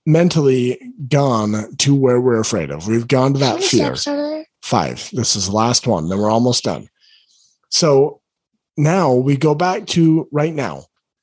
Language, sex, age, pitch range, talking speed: English, male, 40-59, 135-185 Hz, 160 wpm